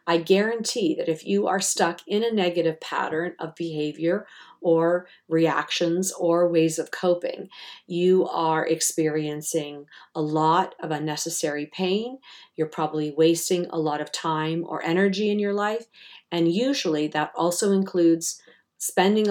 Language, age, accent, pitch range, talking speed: English, 50-69, American, 160-195 Hz, 140 wpm